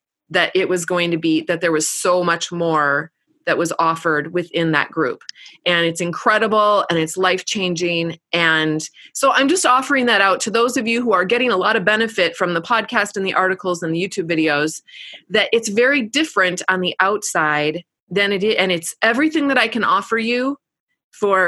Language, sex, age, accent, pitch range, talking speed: English, female, 30-49, American, 170-230 Hz, 200 wpm